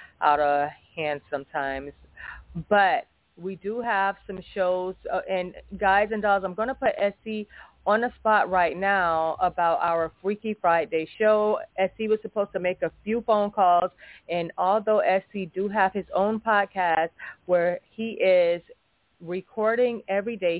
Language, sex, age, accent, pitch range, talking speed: English, female, 30-49, American, 170-215 Hz, 155 wpm